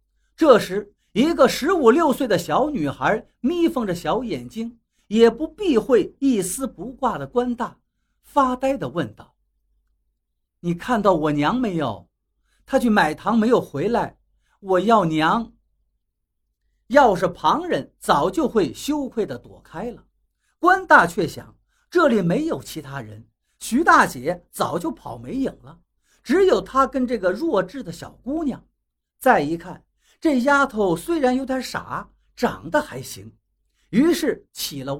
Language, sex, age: Chinese, male, 50-69